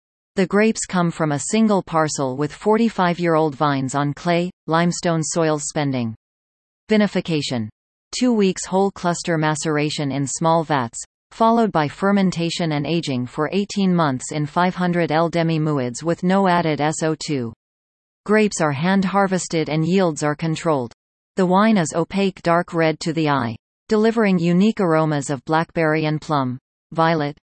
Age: 40-59